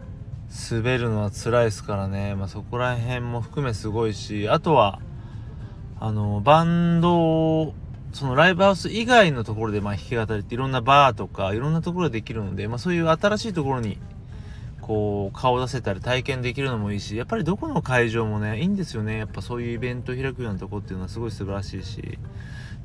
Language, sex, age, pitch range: Japanese, male, 20-39, 105-125 Hz